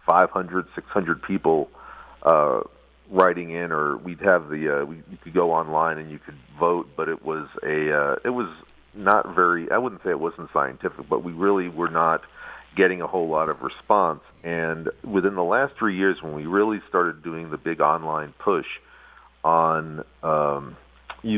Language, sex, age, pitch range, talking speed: English, male, 40-59, 75-90 Hz, 175 wpm